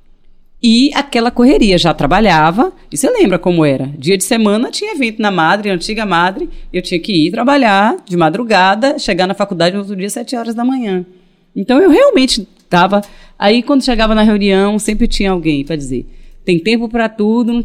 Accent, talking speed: Brazilian, 185 wpm